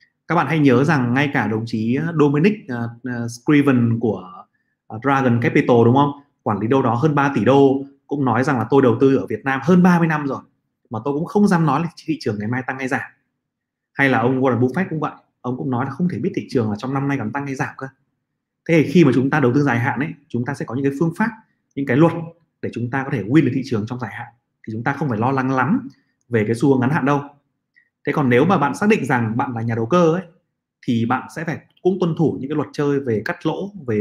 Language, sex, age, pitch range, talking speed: Vietnamese, male, 20-39, 120-150 Hz, 275 wpm